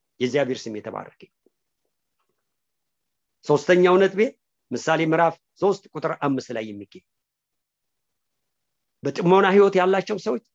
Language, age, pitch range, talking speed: English, 50-69, 145-200 Hz, 95 wpm